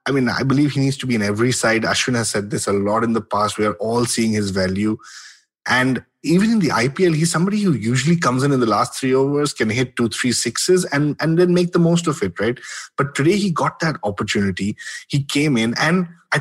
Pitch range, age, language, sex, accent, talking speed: 115-150 Hz, 30-49, English, male, Indian, 245 wpm